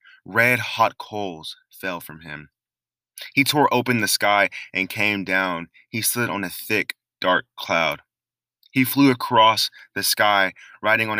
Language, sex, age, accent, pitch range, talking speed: English, male, 20-39, American, 90-110 Hz, 150 wpm